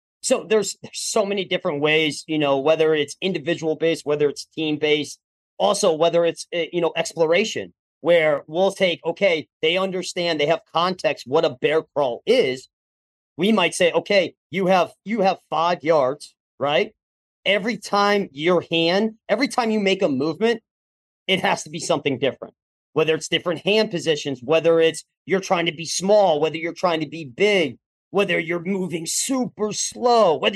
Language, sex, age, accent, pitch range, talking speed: English, male, 40-59, American, 150-195 Hz, 175 wpm